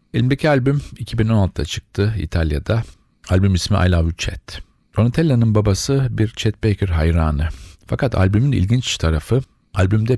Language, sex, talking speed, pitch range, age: Turkish, male, 125 wpm, 90-115 Hz, 40-59